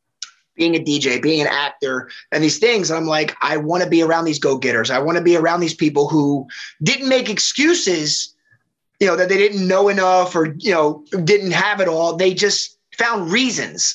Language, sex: English, male